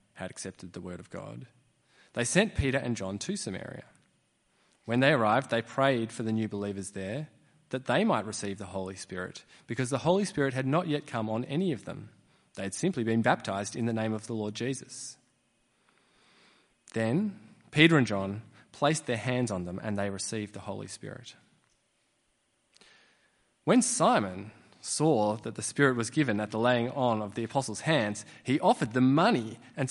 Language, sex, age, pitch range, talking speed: English, male, 20-39, 110-140 Hz, 180 wpm